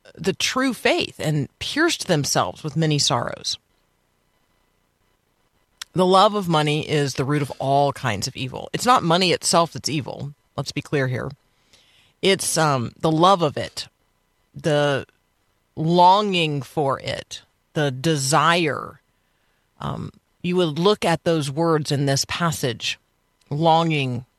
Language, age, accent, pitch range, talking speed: English, 40-59, American, 135-170 Hz, 135 wpm